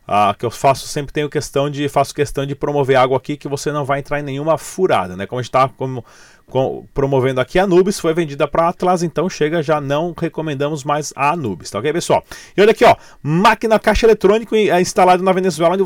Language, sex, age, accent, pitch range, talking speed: Portuguese, male, 30-49, Brazilian, 130-170 Hz, 230 wpm